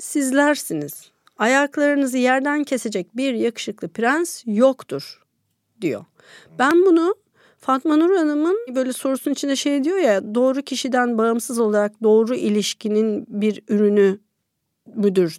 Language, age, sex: Turkish, 50-69, female